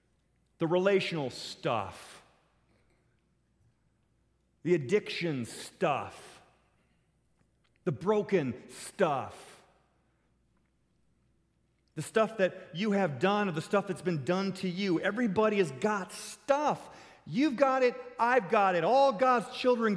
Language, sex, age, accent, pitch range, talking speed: English, male, 40-59, American, 170-220 Hz, 110 wpm